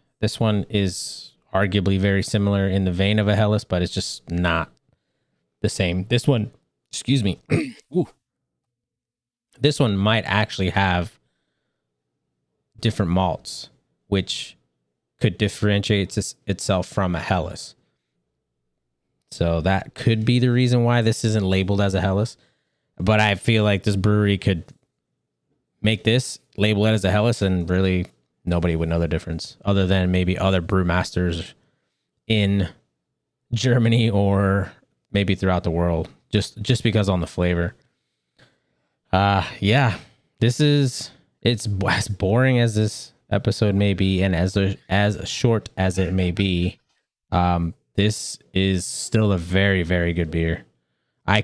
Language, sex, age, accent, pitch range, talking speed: English, male, 20-39, American, 90-110 Hz, 140 wpm